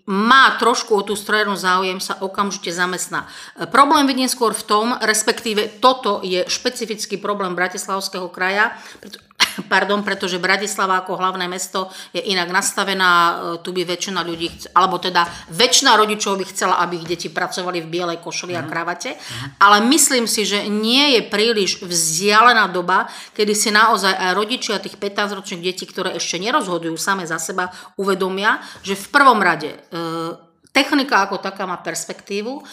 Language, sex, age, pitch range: Slovak, female, 40-59, 175-215 Hz